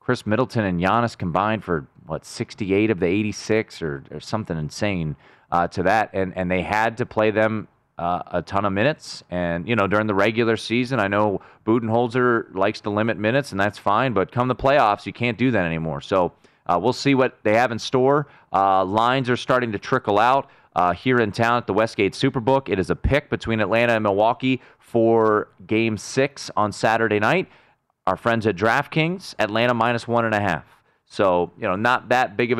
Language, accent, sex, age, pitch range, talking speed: English, American, male, 30-49, 95-120 Hz, 205 wpm